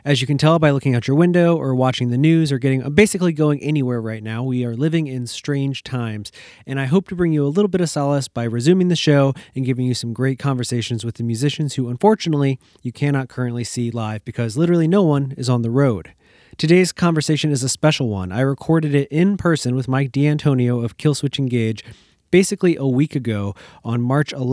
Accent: American